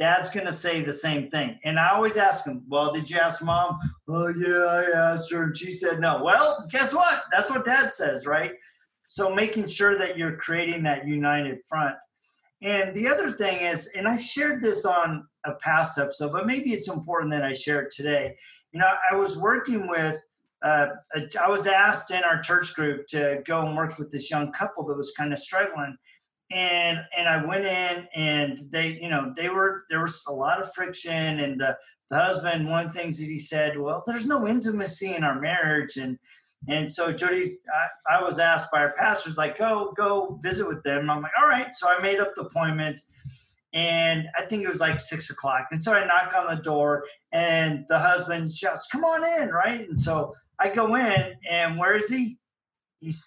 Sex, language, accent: male, English, American